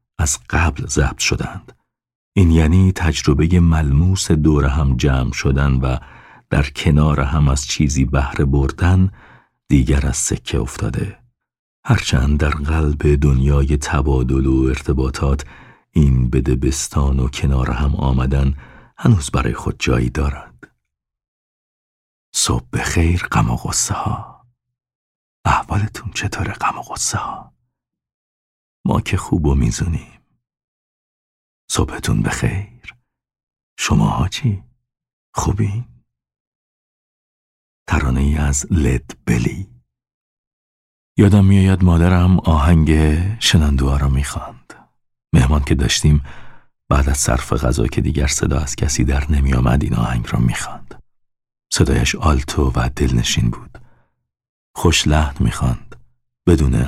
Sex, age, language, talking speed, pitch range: male, 50-69, Persian, 110 wpm, 65-85 Hz